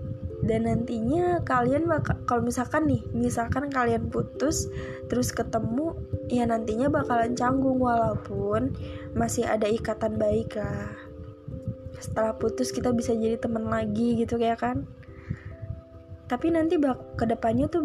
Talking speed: 120 wpm